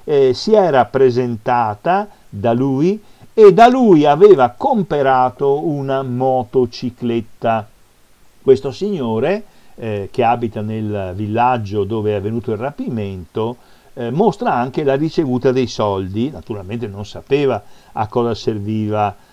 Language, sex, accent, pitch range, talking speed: Italian, male, native, 105-140 Hz, 120 wpm